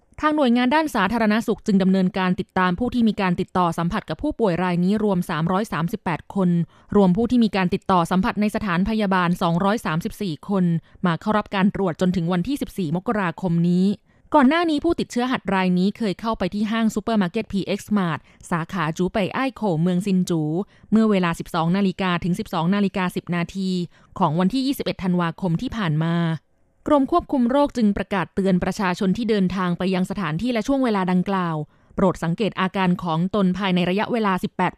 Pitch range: 180-220 Hz